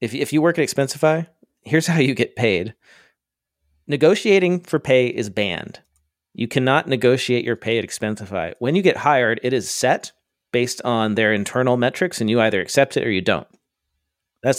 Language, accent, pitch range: English, American, 105-135 Hz